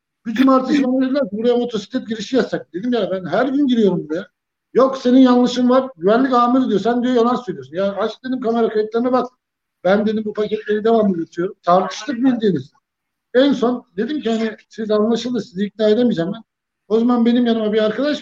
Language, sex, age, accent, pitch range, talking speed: Turkish, male, 60-79, native, 200-245 Hz, 190 wpm